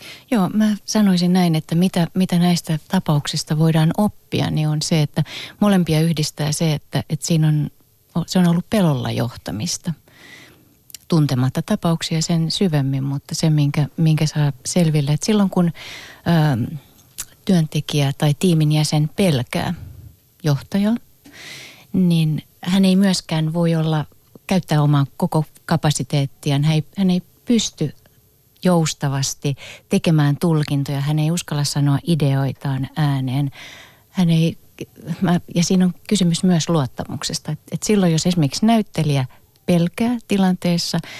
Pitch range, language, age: 140-180 Hz, Finnish, 30-49